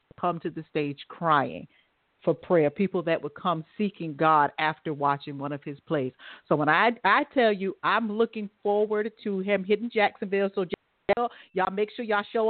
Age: 40-59